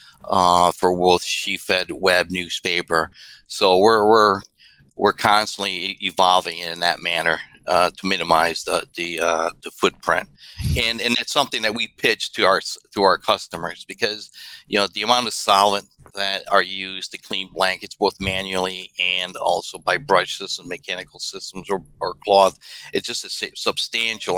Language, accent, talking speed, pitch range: English, American, 160 wpm, 90-100 Hz